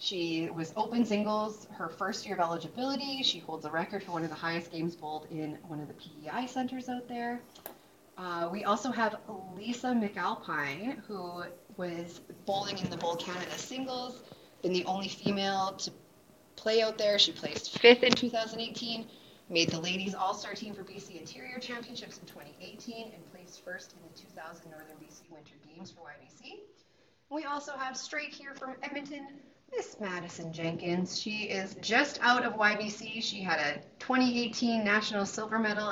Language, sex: English, female